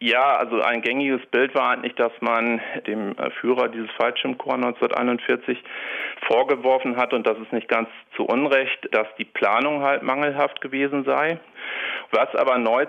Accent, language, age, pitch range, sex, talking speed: German, German, 40-59, 110-135 Hz, male, 155 wpm